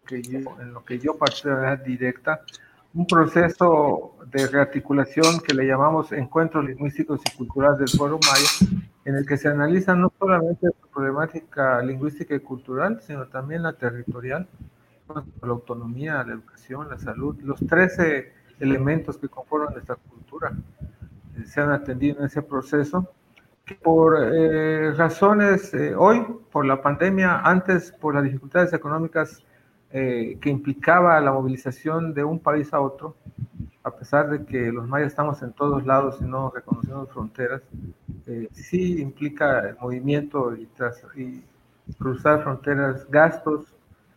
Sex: male